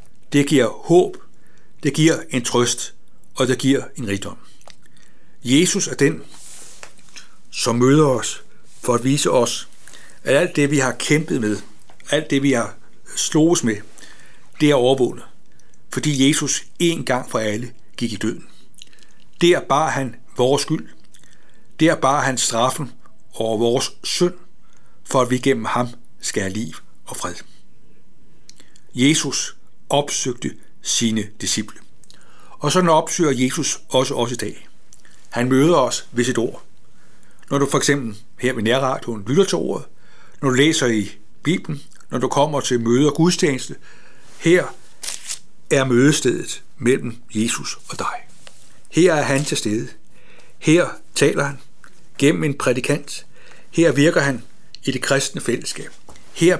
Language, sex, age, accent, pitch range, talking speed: Danish, male, 60-79, native, 120-150 Hz, 145 wpm